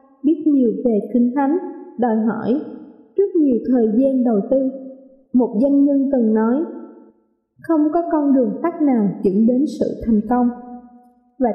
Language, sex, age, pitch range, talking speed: Vietnamese, female, 20-39, 235-290 Hz, 155 wpm